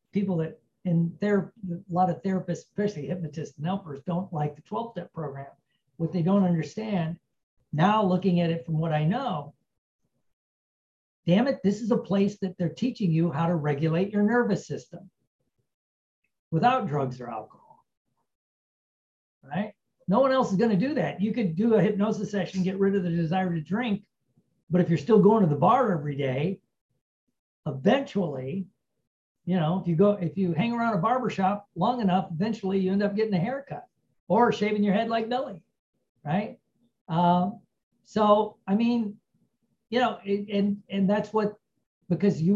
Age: 50-69